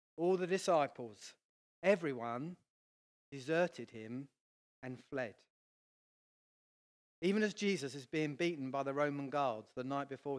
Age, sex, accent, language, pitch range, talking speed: 40-59, male, British, English, 130-180 Hz, 120 wpm